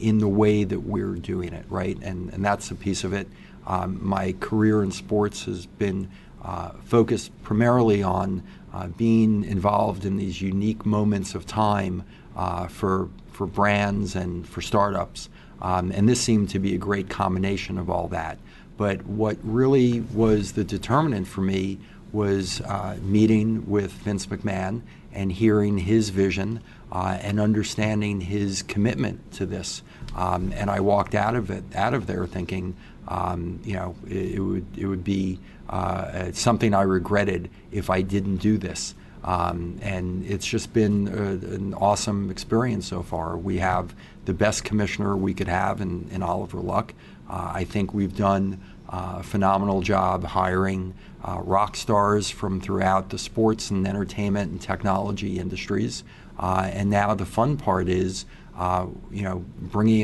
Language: English